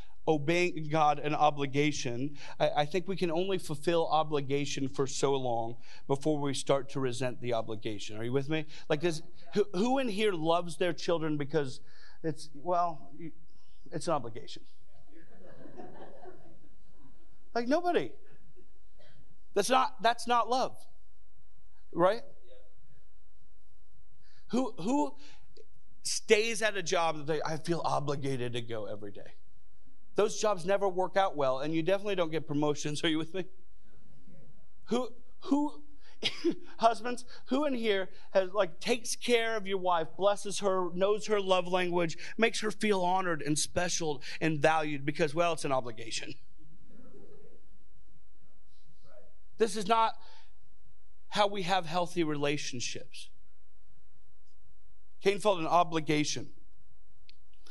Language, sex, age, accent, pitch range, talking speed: English, male, 40-59, American, 145-205 Hz, 130 wpm